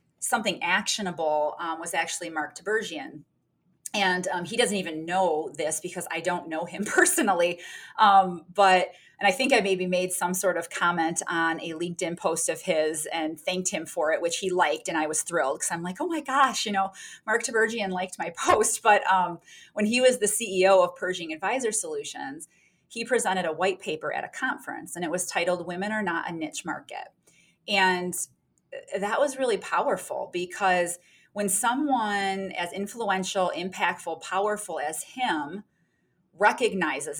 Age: 30-49